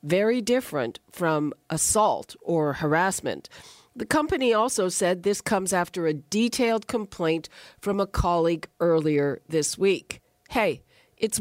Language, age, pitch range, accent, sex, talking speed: English, 50-69, 160-215 Hz, American, female, 125 wpm